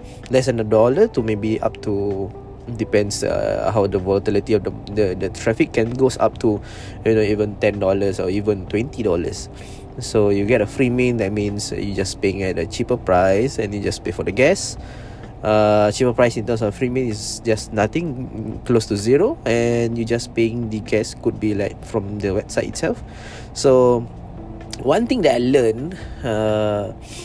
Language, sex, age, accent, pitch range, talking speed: English, male, 20-39, Malaysian, 100-120 Hz, 190 wpm